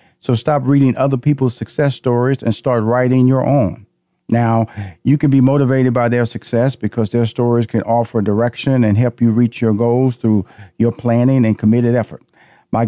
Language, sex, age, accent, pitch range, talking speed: English, male, 50-69, American, 115-140 Hz, 180 wpm